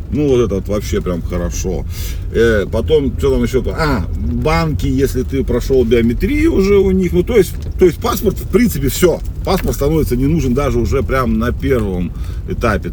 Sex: male